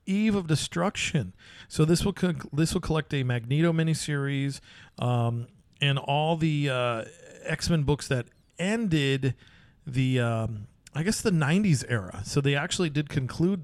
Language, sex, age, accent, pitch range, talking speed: English, male, 40-59, American, 115-150 Hz, 145 wpm